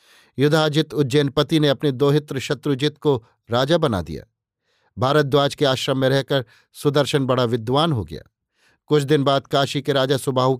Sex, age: male, 50-69